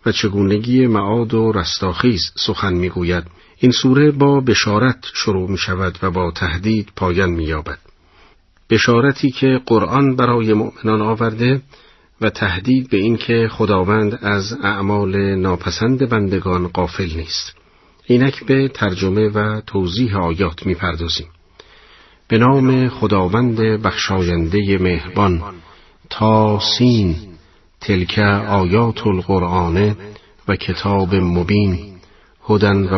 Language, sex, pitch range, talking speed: Persian, male, 90-110 Hz, 105 wpm